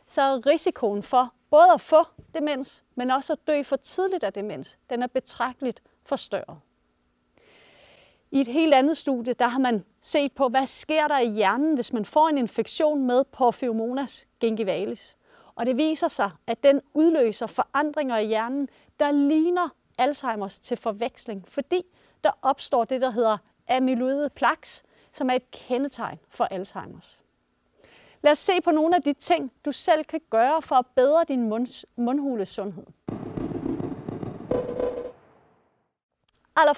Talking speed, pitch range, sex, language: 150 wpm, 235-300 Hz, female, Danish